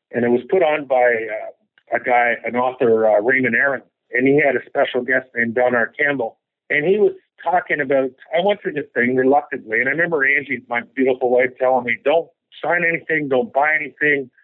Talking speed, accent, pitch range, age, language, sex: 210 wpm, American, 125-155 Hz, 50-69, English, male